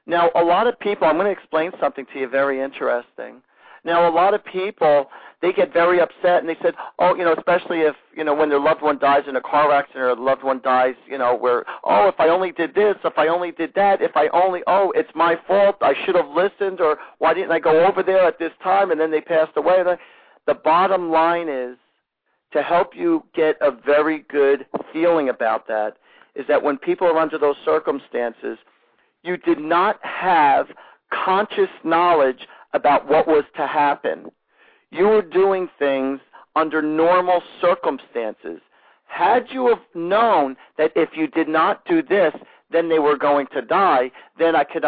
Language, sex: English, male